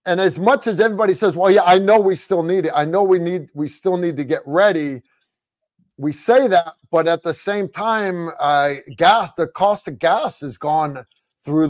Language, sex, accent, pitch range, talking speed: English, male, American, 155-190 Hz, 210 wpm